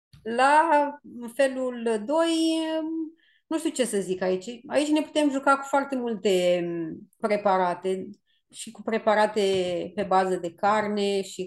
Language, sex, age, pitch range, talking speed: Romanian, female, 30-49, 185-225 Hz, 130 wpm